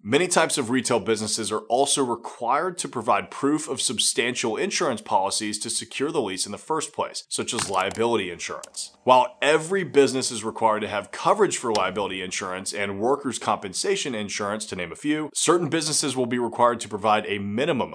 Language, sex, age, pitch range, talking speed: English, male, 30-49, 120-150 Hz, 185 wpm